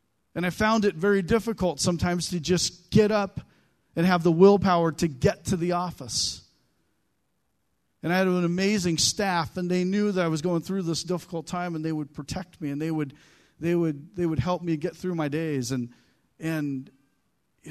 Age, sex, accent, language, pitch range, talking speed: 40-59, male, American, English, 155-200 Hz, 195 wpm